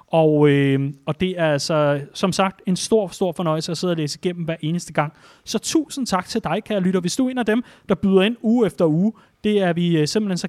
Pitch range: 155-205 Hz